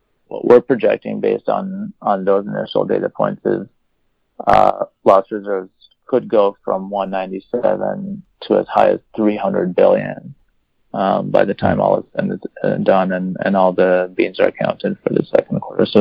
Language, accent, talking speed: English, American, 160 wpm